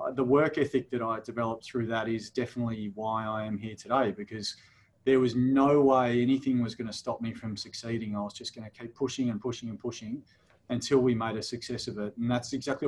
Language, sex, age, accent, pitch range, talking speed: English, male, 30-49, Australian, 110-130 Hz, 230 wpm